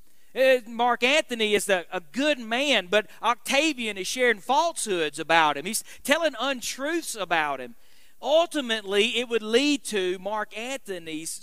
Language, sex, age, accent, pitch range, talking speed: English, male, 40-59, American, 195-255 Hz, 130 wpm